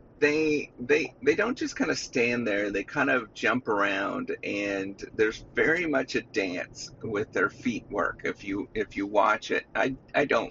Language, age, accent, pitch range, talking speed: English, 30-49, American, 110-140 Hz, 190 wpm